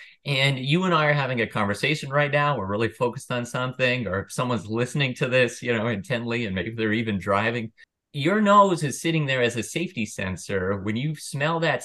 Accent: American